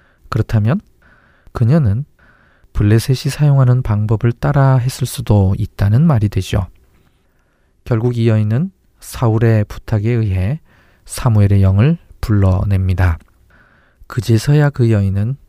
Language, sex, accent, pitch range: Korean, male, native, 100-125 Hz